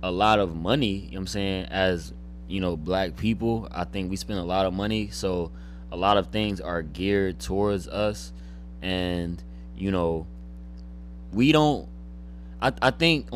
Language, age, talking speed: English, 20-39, 160 wpm